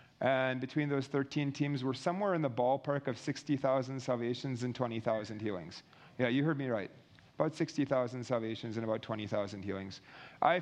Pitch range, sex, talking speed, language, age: 125-155 Hz, male, 165 wpm, English, 40-59